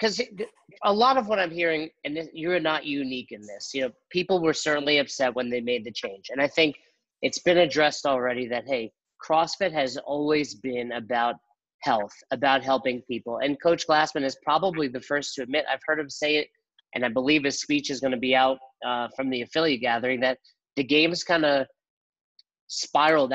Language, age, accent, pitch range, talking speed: English, 30-49, American, 125-155 Hz, 200 wpm